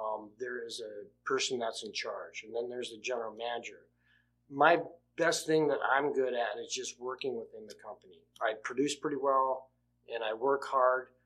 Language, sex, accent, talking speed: English, male, American, 185 wpm